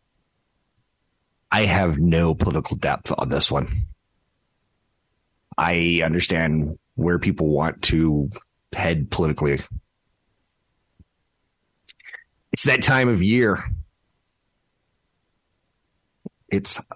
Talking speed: 80 wpm